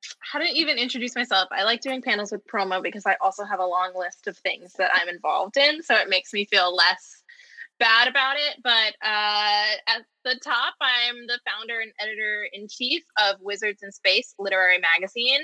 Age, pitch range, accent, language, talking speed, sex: 10-29, 195-260 Hz, American, English, 190 wpm, female